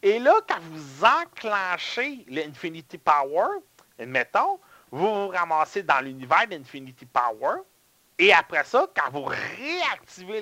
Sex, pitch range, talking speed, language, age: male, 150-220 Hz, 120 wpm, French, 40-59